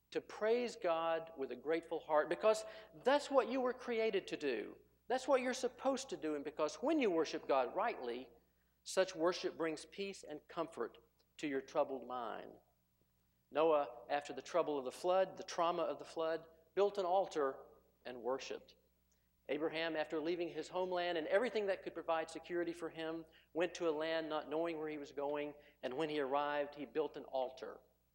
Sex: male